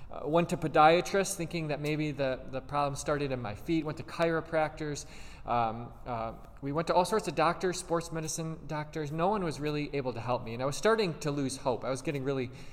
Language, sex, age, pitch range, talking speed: English, male, 20-39, 125-155 Hz, 225 wpm